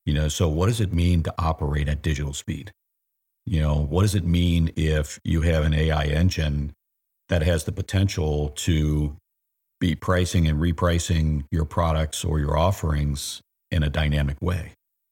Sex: male